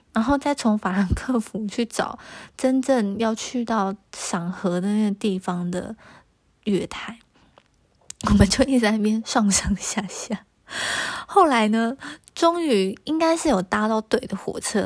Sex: female